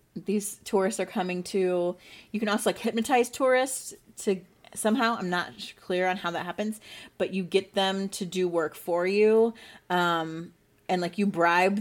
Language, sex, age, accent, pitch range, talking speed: English, female, 30-49, American, 175-215 Hz, 175 wpm